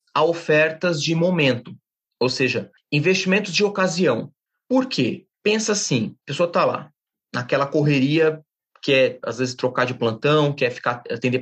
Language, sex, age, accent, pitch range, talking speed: Portuguese, male, 30-49, Brazilian, 130-190 Hz, 140 wpm